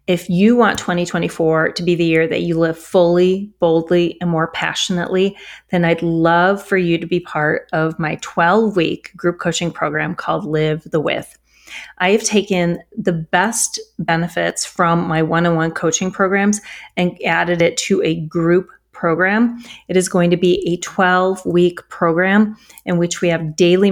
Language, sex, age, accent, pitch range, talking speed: English, female, 30-49, American, 165-185 Hz, 165 wpm